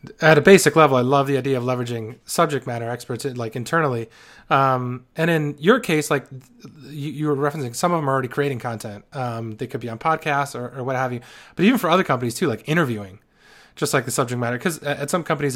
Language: English